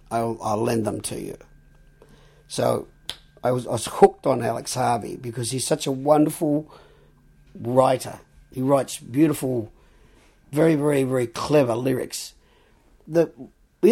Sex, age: male, 50-69